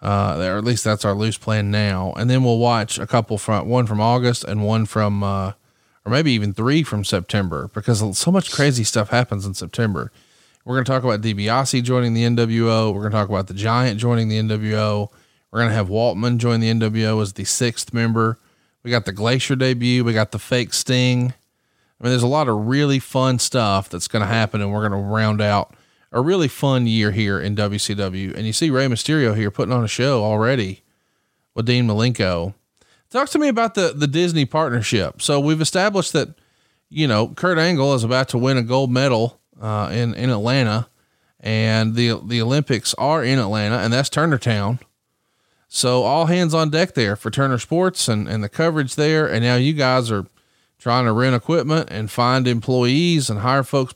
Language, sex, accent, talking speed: English, male, American, 205 wpm